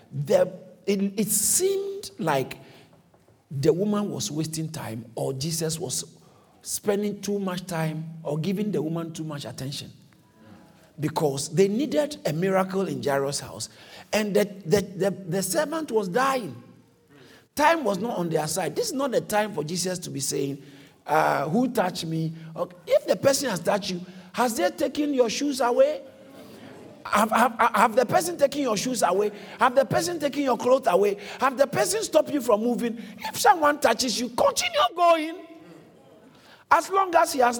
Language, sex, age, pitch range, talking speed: English, male, 50-69, 180-295 Hz, 165 wpm